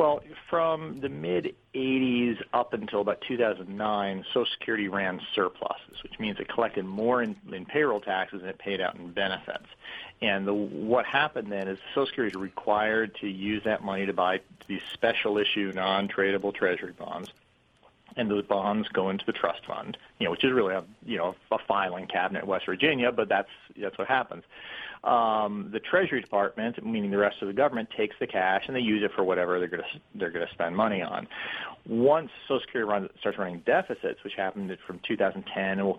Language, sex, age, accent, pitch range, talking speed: English, male, 40-59, American, 95-110 Hz, 195 wpm